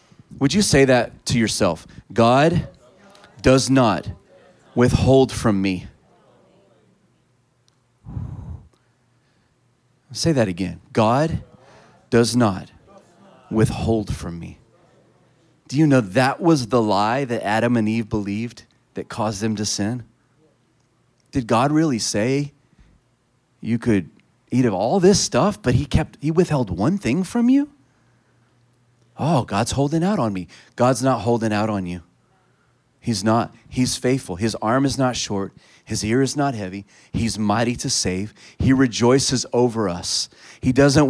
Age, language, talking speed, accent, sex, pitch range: 30-49, English, 135 wpm, American, male, 110-135 Hz